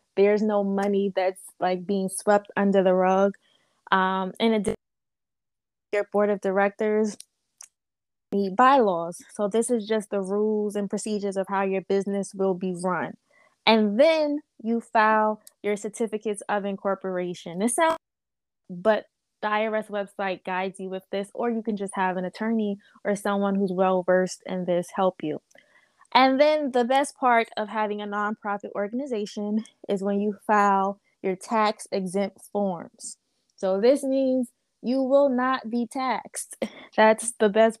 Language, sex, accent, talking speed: English, female, American, 150 wpm